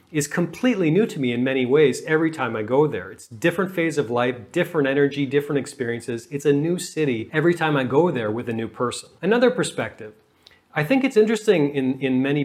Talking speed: 210 wpm